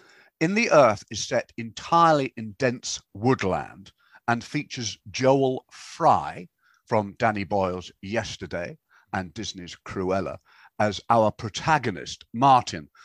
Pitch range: 100-130 Hz